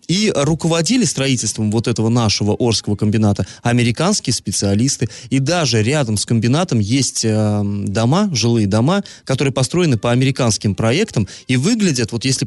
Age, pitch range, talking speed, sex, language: 20-39, 110-150 Hz, 135 wpm, male, Russian